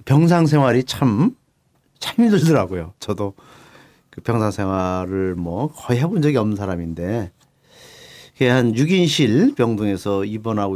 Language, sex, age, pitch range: Korean, male, 40-59, 95-150 Hz